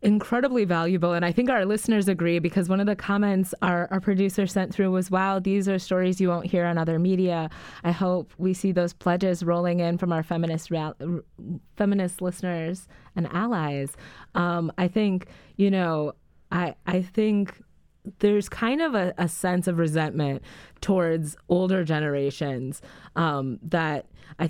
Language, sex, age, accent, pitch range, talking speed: English, female, 20-39, American, 160-195 Hz, 165 wpm